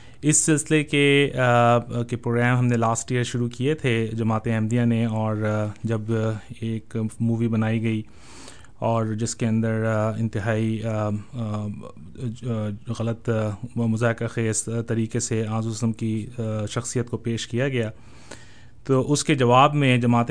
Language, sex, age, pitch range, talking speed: Urdu, male, 30-49, 110-120 Hz, 130 wpm